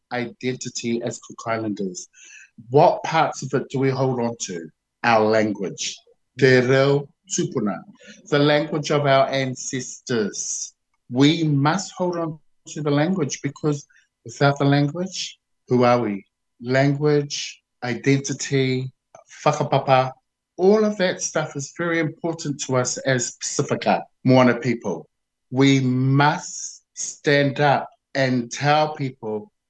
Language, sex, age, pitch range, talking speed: English, male, 50-69, 125-150 Hz, 120 wpm